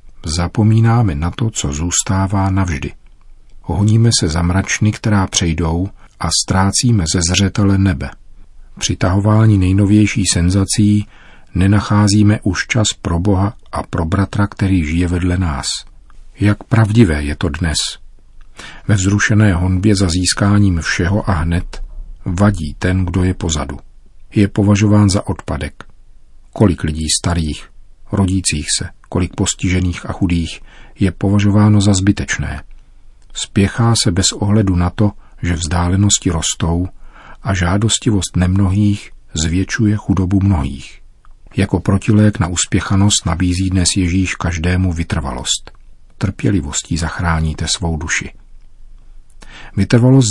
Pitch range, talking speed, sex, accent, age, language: 85-105 Hz, 115 wpm, male, native, 40-59, Czech